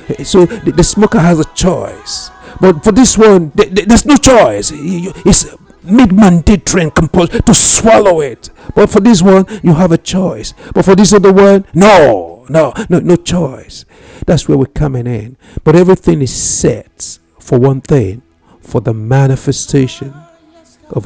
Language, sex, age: English, male, 60-79